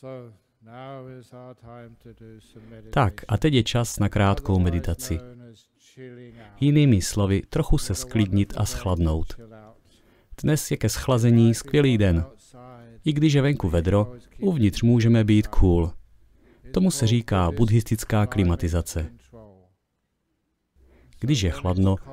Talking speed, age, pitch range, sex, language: 105 wpm, 40-59, 100-130 Hz, male, Czech